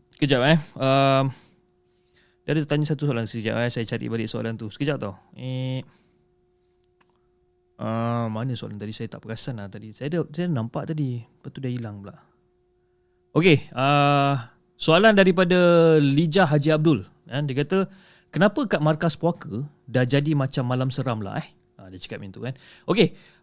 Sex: male